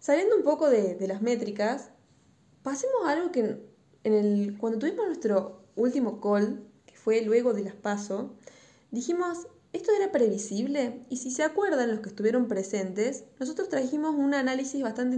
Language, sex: Spanish, female